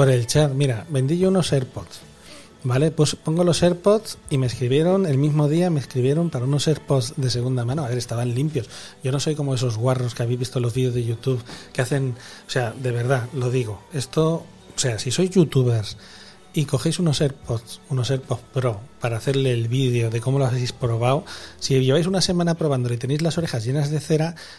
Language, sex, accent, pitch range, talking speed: Spanish, male, Spanish, 120-150 Hz, 210 wpm